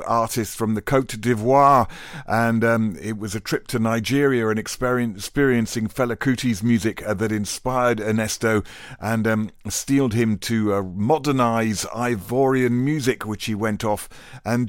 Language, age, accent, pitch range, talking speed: English, 50-69, British, 105-125 Hz, 145 wpm